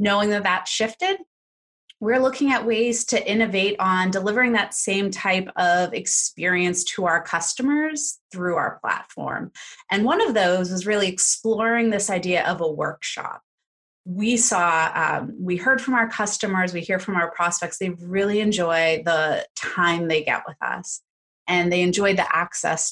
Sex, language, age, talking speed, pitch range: female, English, 30-49, 160 wpm, 170-225 Hz